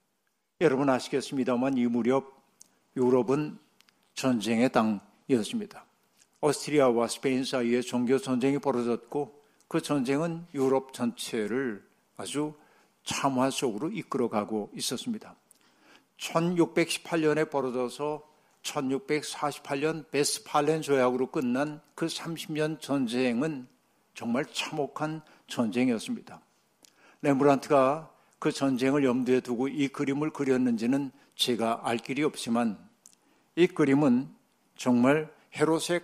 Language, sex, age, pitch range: Korean, male, 60-79, 125-155 Hz